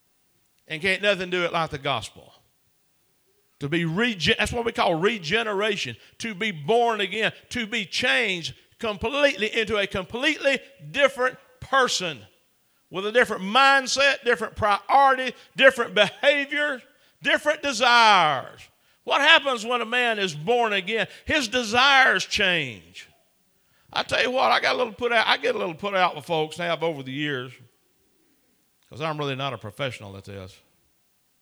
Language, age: English, 50-69